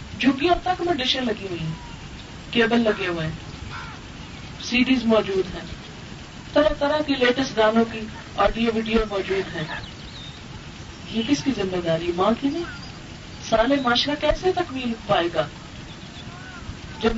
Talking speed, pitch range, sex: 145 wpm, 215-300 Hz, female